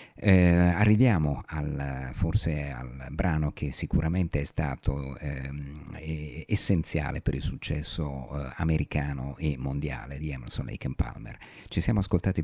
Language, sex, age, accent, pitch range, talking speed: Italian, male, 50-69, native, 70-90 Hz, 130 wpm